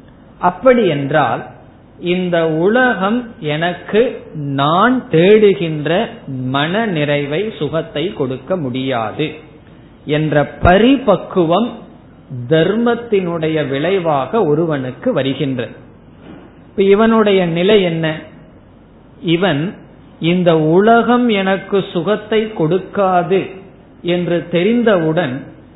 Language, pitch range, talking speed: Tamil, 150-210 Hz, 65 wpm